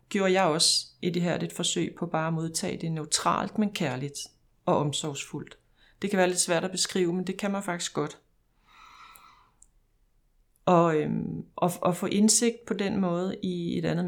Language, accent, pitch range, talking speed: Danish, native, 165-205 Hz, 185 wpm